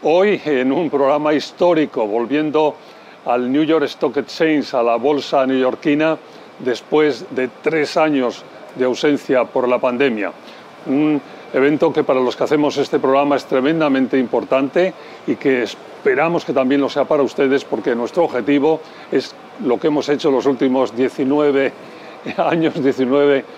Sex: male